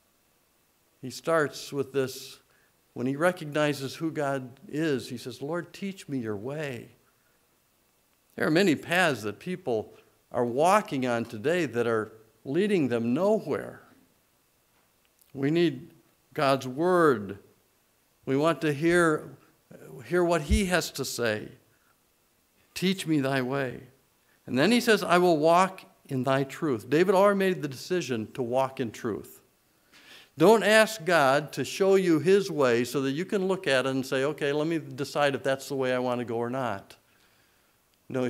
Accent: American